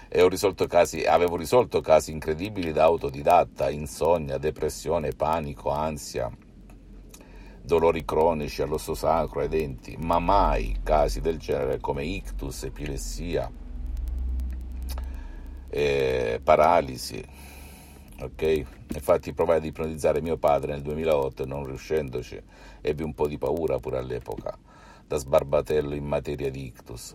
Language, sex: Italian, male